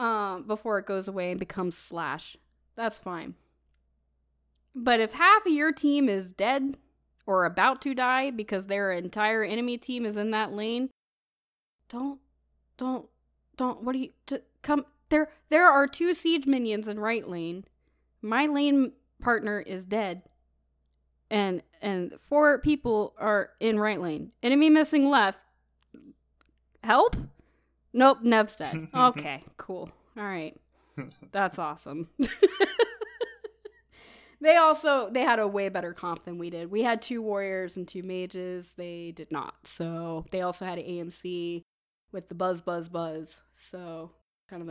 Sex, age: female, 10-29